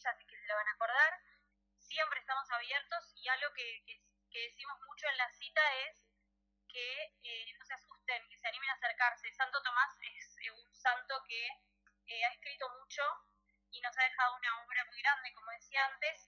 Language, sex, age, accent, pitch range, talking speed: Spanish, female, 20-39, Argentinian, 230-275 Hz, 190 wpm